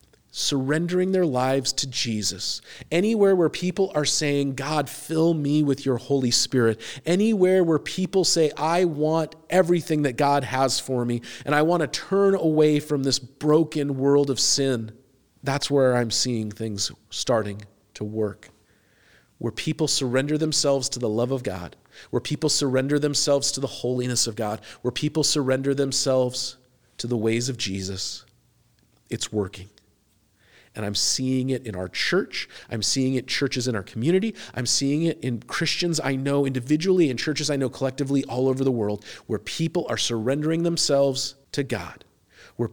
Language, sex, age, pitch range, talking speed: English, male, 40-59, 115-150 Hz, 165 wpm